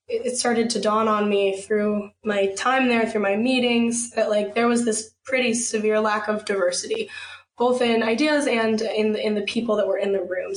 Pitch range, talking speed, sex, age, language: 205-245 Hz, 210 wpm, female, 10-29, English